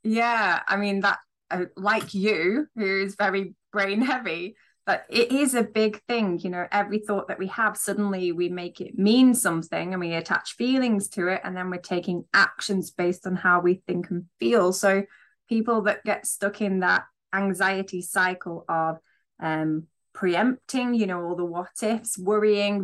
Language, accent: English, British